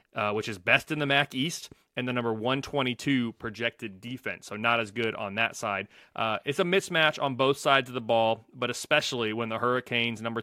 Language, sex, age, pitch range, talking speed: English, male, 30-49, 115-140 Hz, 215 wpm